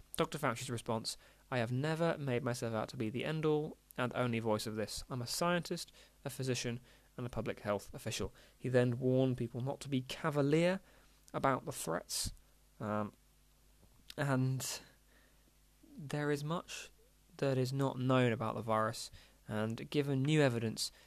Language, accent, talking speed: English, British, 155 wpm